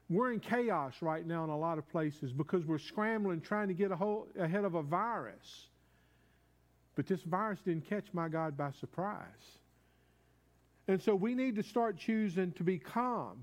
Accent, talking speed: American, 175 wpm